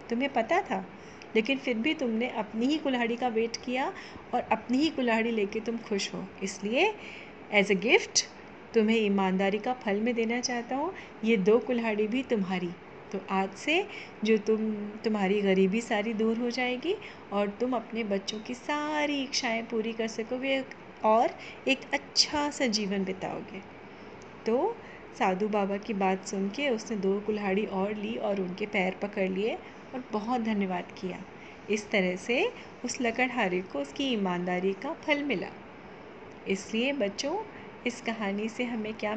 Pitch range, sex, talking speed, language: 205-250 Hz, female, 160 wpm, Hindi